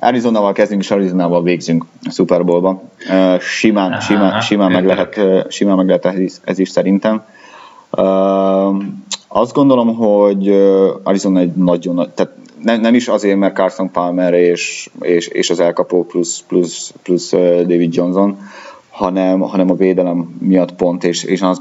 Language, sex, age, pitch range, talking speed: Hungarian, male, 20-39, 85-95 Hz, 135 wpm